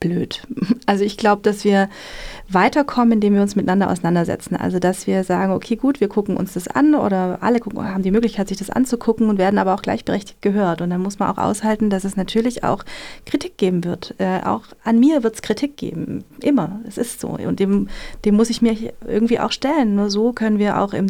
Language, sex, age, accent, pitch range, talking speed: German, female, 30-49, German, 195-230 Hz, 220 wpm